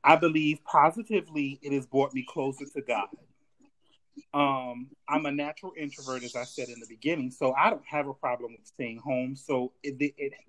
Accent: American